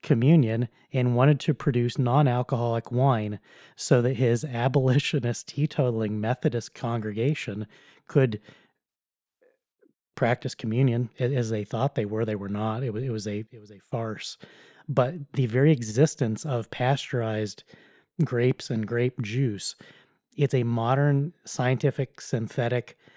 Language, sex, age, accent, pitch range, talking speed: English, male, 30-49, American, 115-145 Hz, 125 wpm